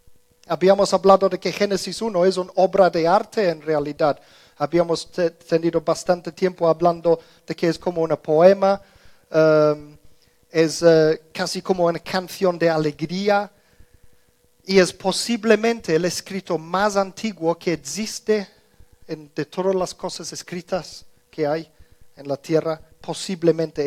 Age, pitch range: 40-59, 160-185 Hz